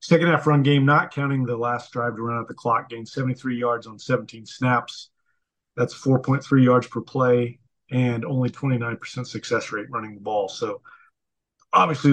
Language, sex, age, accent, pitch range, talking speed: English, male, 40-59, American, 120-150 Hz, 175 wpm